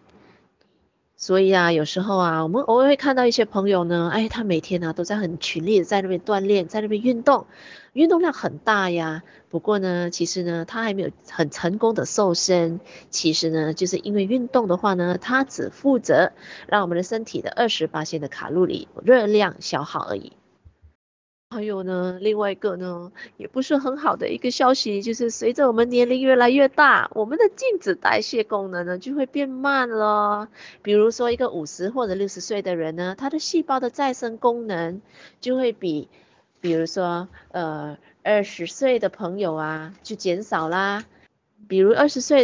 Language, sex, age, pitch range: Chinese, female, 30-49, 175-235 Hz